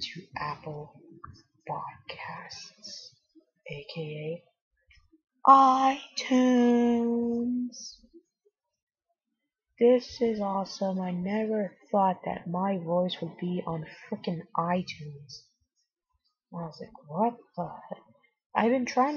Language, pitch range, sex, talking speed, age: English, 160-235 Hz, female, 85 wpm, 20-39